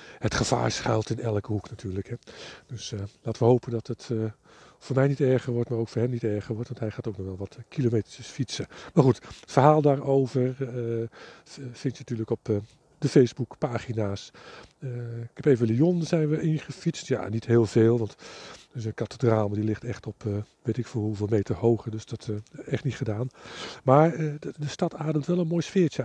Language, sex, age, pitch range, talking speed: Dutch, male, 50-69, 115-140 Hz, 220 wpm